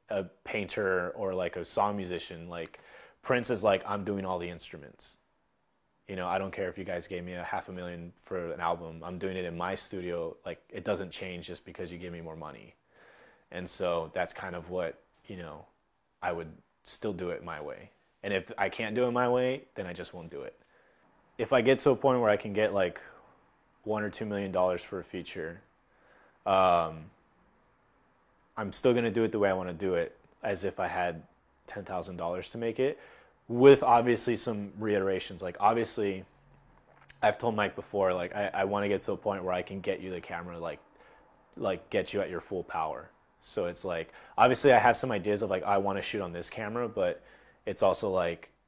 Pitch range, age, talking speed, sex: 90-110 Hz, 20-39, 210 wpm, male